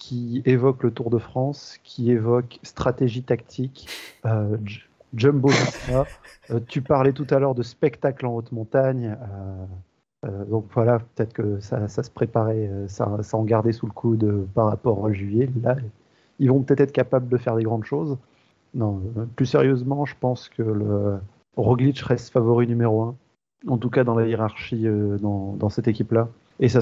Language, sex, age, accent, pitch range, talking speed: French, male, 30-49, French, 110-125 Hz, 180 wpm